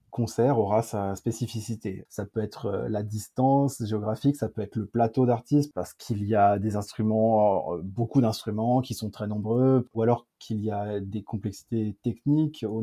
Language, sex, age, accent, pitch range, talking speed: French, male, 20-39, French, 110-125 Hz, 175 wpm